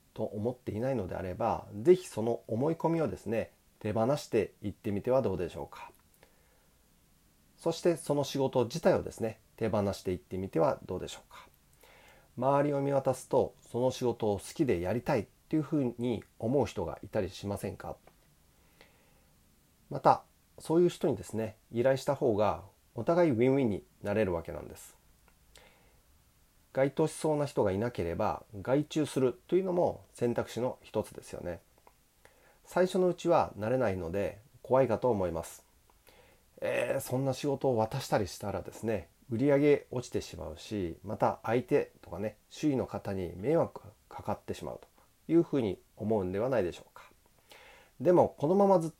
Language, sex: Japanese, male